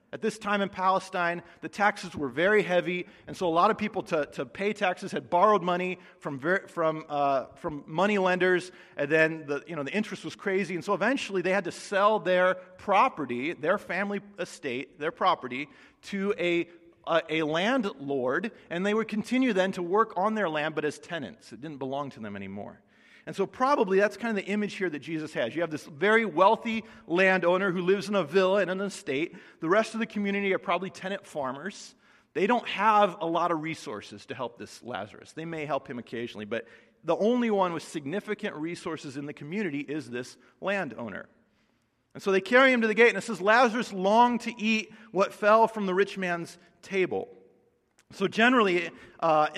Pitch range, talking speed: 160-205 Hz, 200 wpm